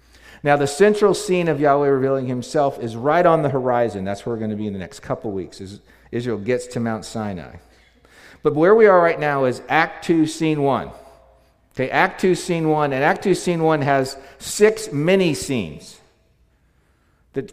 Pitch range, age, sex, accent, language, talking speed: 115-150 Hz, 50-69, male, American, English, 190 wpm